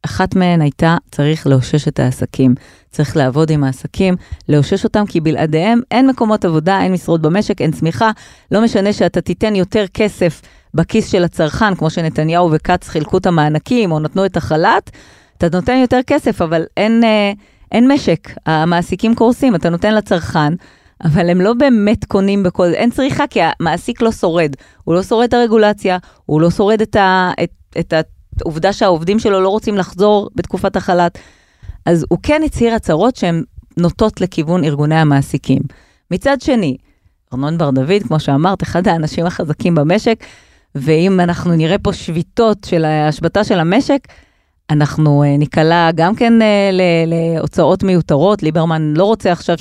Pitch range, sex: 155-205 Hz, female